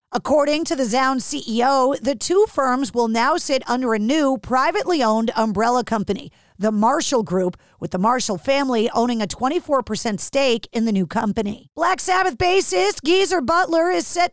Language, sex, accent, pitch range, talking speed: English, female, American, 230-305 Hz, 170 wpm